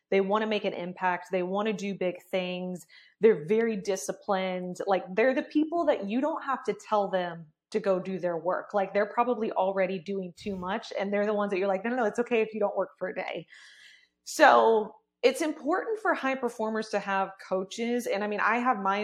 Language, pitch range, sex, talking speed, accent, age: English, 185-220 Hz, female, 225 wpm, American, 20-39